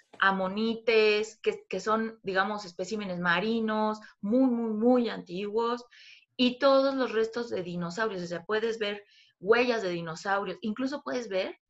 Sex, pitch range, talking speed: female, 185-250 Hz, 140 wpm